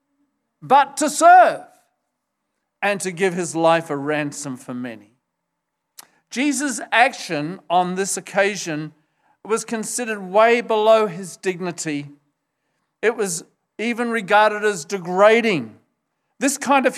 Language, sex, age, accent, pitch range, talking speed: English, male, 50-69, South African, 170-250 Hz, 115 wpm